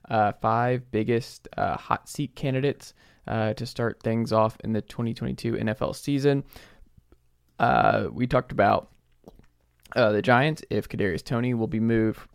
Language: English